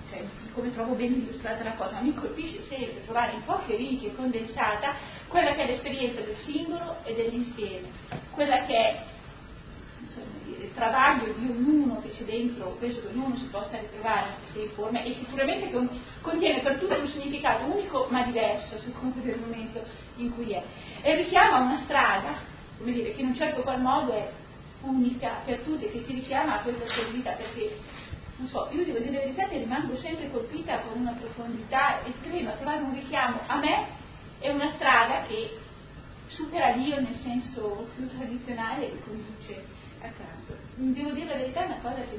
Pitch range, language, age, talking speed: 230-275 Hz, Italian, 40-59, 175 wpm